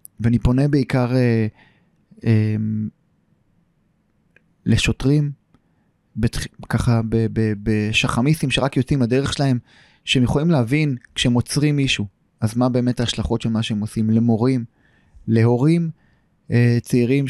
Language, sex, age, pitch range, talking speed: Hebrew, male, 20-39, 110-130 Hz, 110 wpm